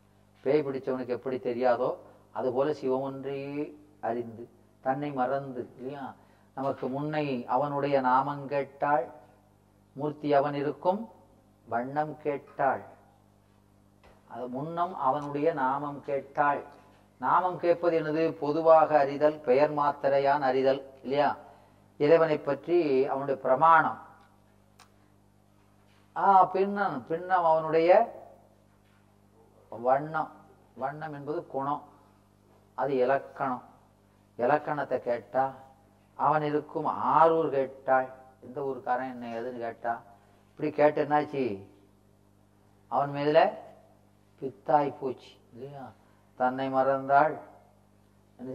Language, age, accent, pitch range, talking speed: Tamil, 40-59, native, 100-145 Hz, 85 wpm